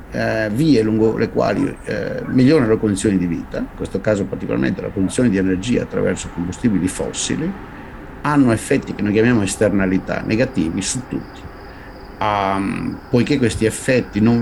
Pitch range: 90-115 Hz